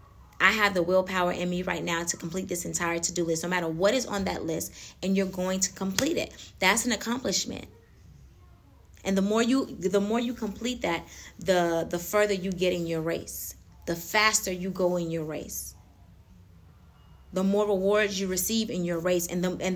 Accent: American